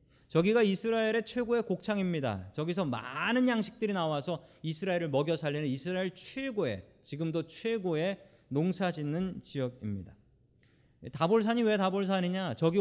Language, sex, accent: Korean, male, native